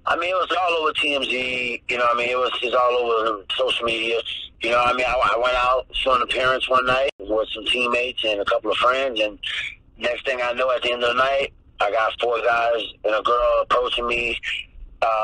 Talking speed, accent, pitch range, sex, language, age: 250 wpm, American, 115-135 Hz, male, English, 30-49